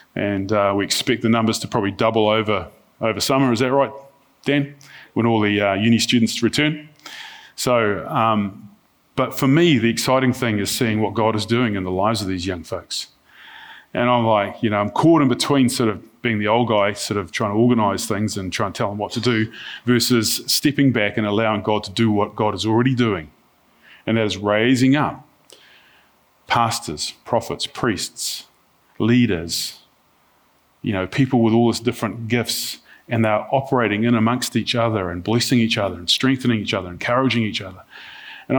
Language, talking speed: English, 190 wpm